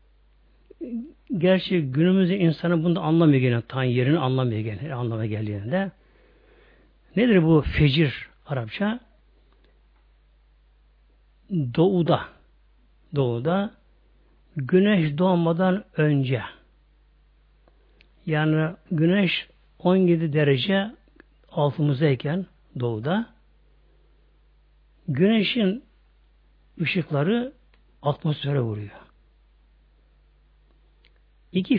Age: 60-79